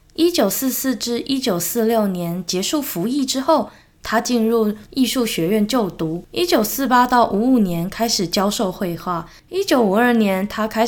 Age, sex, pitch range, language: 10-29, female, 180-245 Hz, Chinese